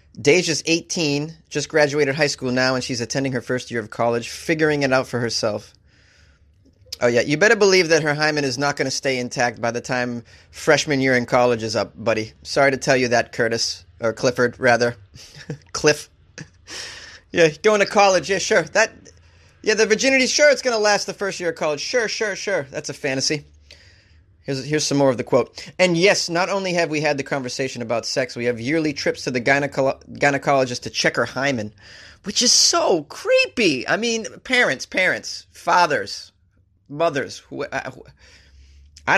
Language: English